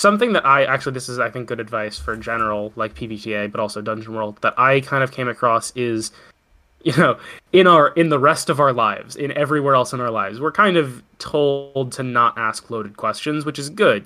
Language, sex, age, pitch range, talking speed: English, male, 20-39, 115-145 Hz, 225 wpm